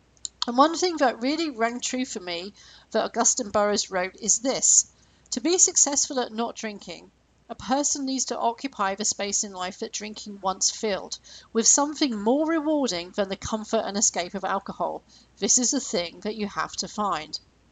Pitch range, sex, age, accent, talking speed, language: 200-255 Hz, female, 40-59, British, 185 wpm, English